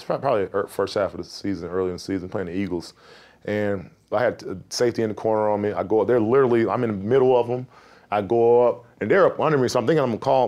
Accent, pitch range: American, 105-135 Hz